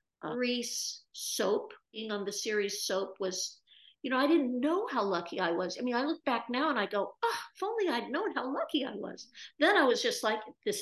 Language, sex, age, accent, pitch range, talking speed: English, female, 50-69, American, 210-325 Hz, 235 wpm